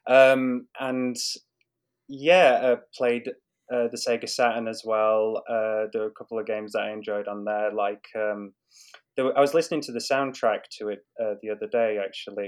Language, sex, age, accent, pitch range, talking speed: English, male, 20-39, British, 105-135 Hz, 195 wpm